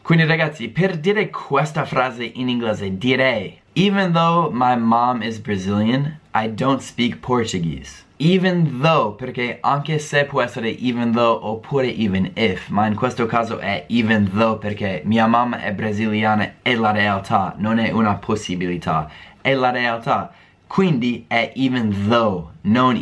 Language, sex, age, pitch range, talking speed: Italian, male, 20-39, 100-135 Hz, 150 wpm